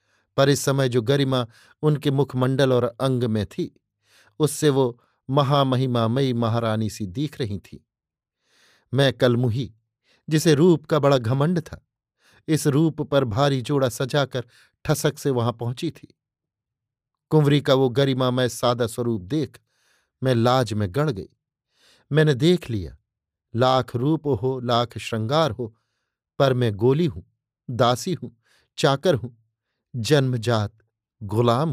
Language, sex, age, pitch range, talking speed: Hindi, male, 50-69, 120-155 Hz, 130 wpm